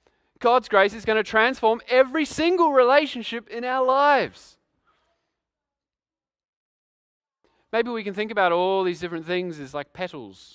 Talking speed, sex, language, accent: 135 wpm, male, English, Australian